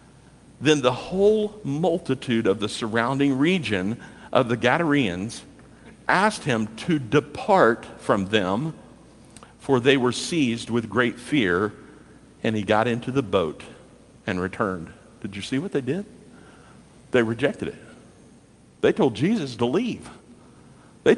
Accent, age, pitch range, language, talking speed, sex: American, 50-69, 115-160 Hz, English, 135 wpm, male